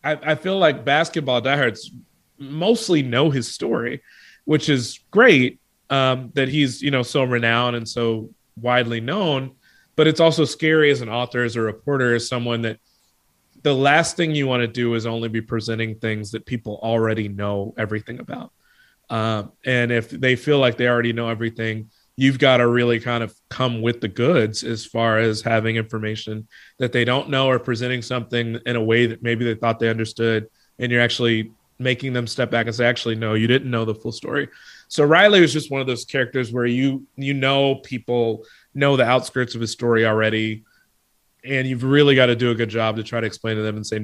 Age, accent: 30-49, American